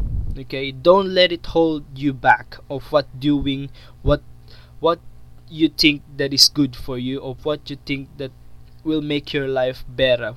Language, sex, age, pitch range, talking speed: English, male, 20-39, 125-160 Hz, 170 wpm